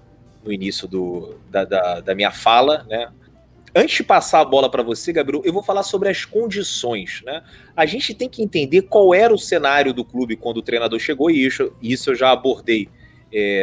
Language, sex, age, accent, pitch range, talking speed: Portuguese, male, 30-49, Brazilian, 115-150 Hz, 205 wpm